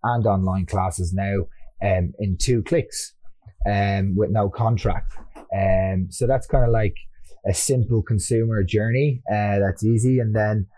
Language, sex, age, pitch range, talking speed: English, male, 20-39, 95-115 Hz, 150 wpm